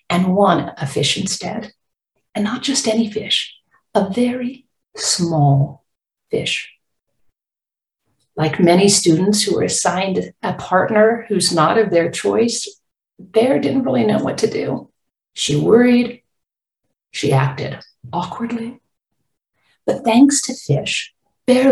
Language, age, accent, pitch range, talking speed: English, 50-69, American, 175-240 Hz, 120 wpm